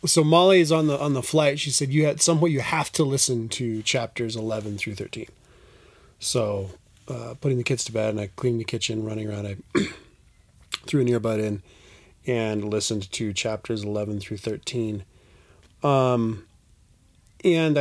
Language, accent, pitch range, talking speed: English, American, 110-145 Hz, 165 wpm